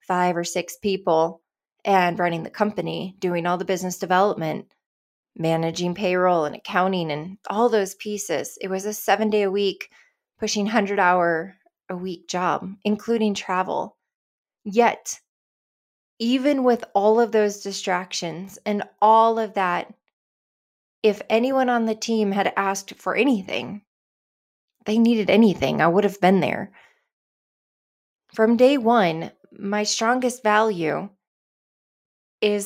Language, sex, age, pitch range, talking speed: English, female, 20-39, 185-220 Hz, 130 wpm